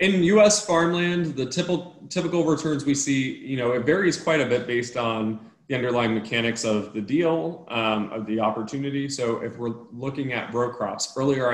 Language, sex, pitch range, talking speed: English, male, 105-120 Hz, 180 wpm